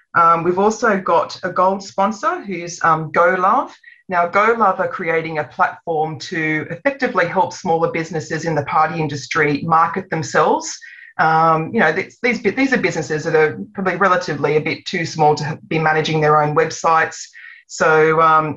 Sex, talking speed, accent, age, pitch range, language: female, 160 wpm, Australian, 30-49, 155-185 Hz, English